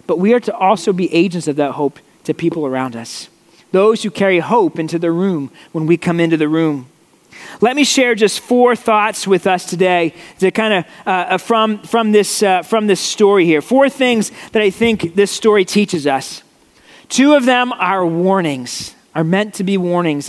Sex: male